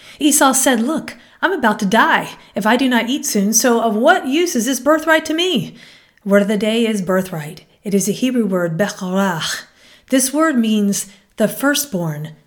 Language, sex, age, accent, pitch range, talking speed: English, female, 40-59, American, 190-255 Hz, 190 wpm